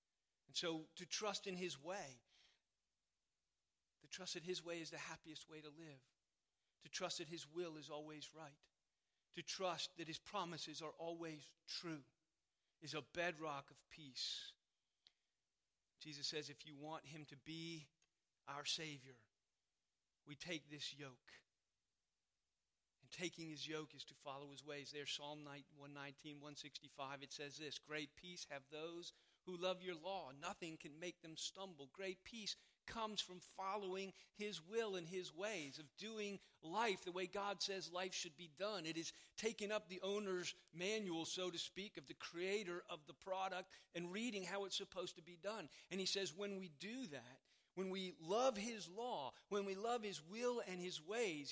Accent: American